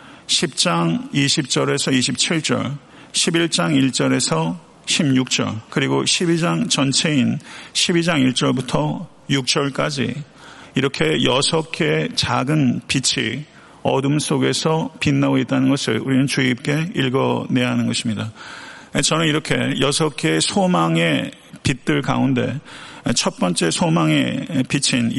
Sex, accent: male, native